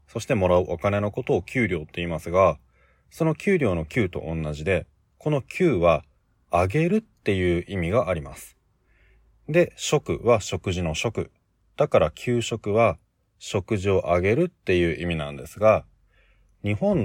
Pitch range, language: 85-110 Hz, Japanese